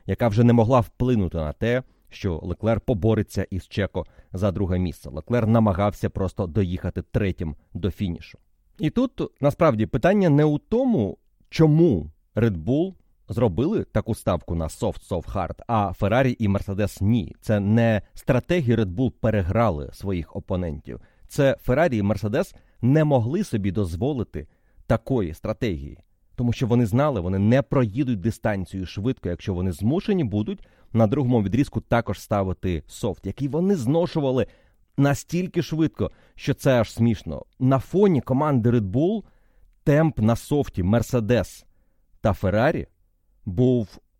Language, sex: Ukrainian, male